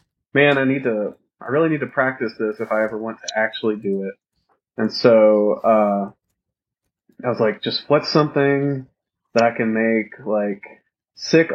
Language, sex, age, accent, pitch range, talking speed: English, male, 20-39, American, 110-130 Hz, 170 wpm